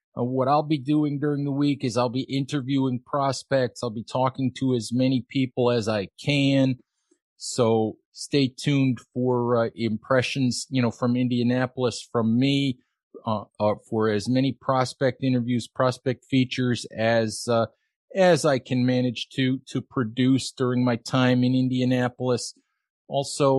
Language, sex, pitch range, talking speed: English, male, 120-145 Hz, 150 wpm